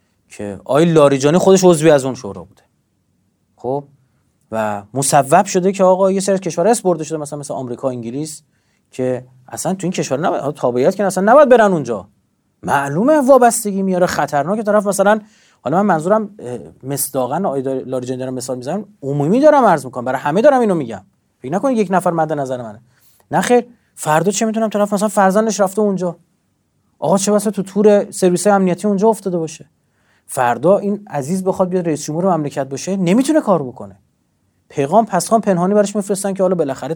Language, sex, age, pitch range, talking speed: Persian, male, 30-49, 130-200 Hz, 175 wpm